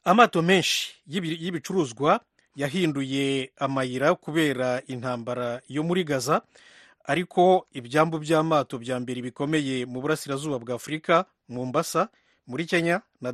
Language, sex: English, male